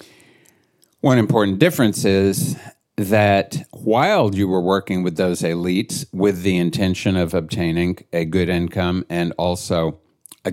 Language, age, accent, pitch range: English, 50-69, American, 85-105 Hz